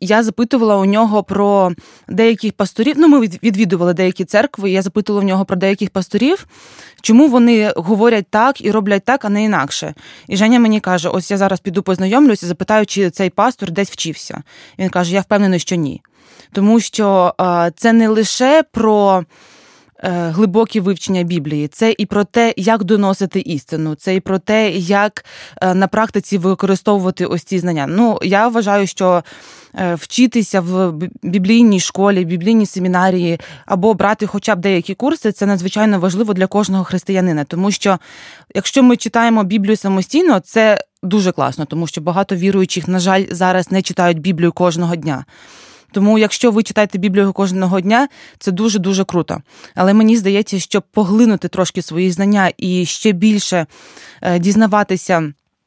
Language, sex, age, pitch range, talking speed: Ukrainian, female, 20-39, 185-215 Hz, 155 wpm